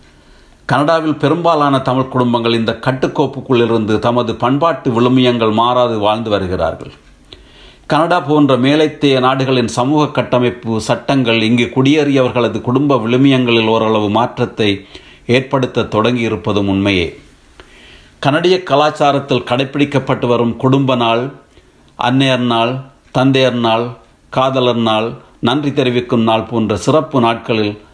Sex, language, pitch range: male, Tamil, 115-135 Hz